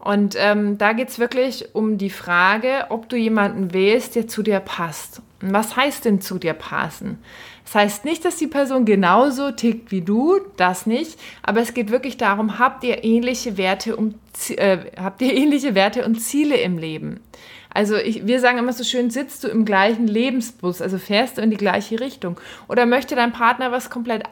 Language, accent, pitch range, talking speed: German, German, 200-245 Hz, 195 wpm